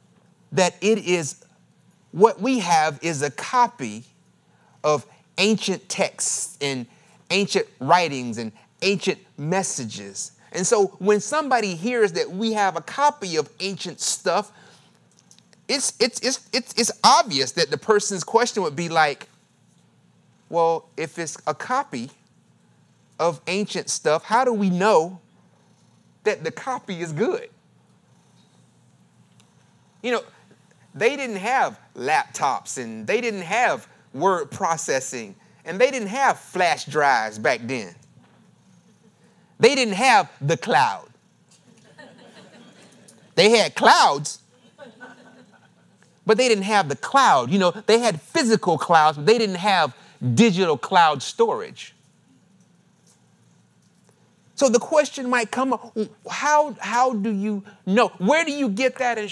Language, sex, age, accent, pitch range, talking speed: English, male, 30-49, American, 165-235 Hz, 125 wpm